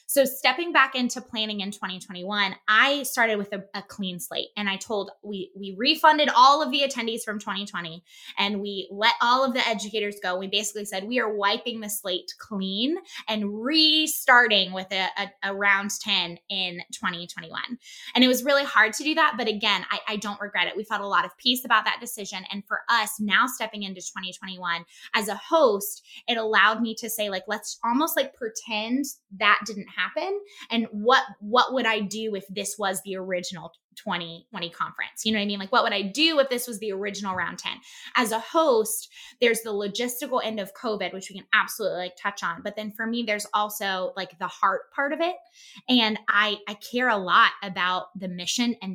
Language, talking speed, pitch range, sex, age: English, 205 wpm, 195-245 Hz, female, 20-39